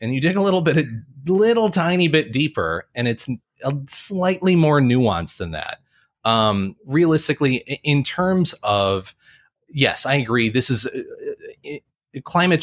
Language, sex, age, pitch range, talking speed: English, male, 30-49, 100-140 Hz, 145 wpm